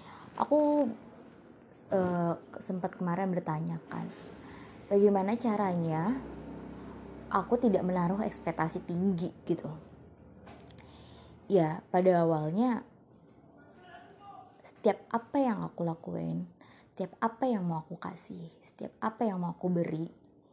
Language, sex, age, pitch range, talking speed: Indonesian, female, 20-39, 175-210 Hz, 95 wpm